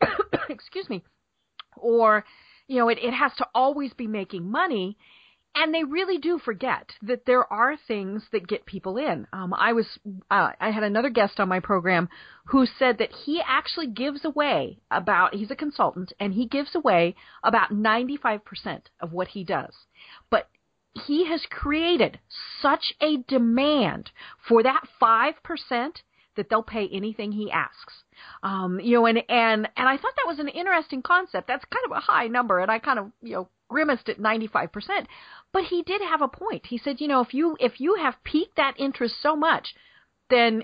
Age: 40-59